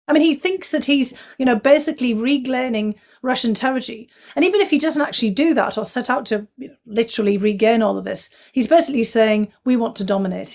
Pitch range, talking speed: 220-275 Hz, 215 wpm